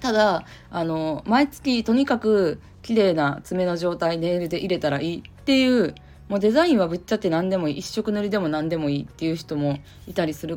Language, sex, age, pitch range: Japanese, female, 20-39, 150-215 Hz